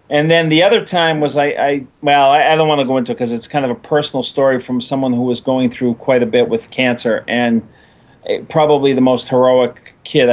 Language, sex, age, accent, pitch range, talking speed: English, male, 40-59, American, 115-140 Hz, 230 wpm